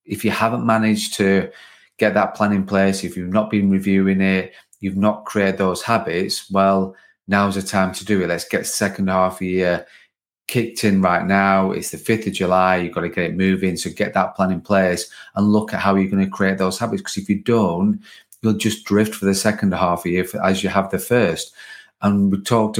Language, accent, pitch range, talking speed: English, British, 95-105 Hz, 230 wpm